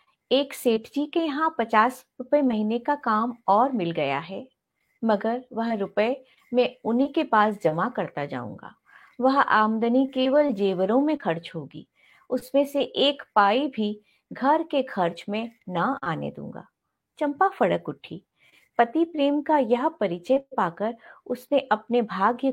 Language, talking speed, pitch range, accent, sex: Hindi, 145 wpm, 210-280 Hz, native, female